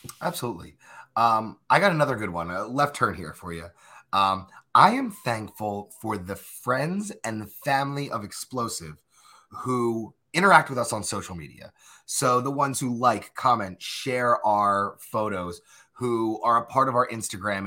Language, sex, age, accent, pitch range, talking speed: English, male, 30-49, American, 100-130 Hz, 160 wpm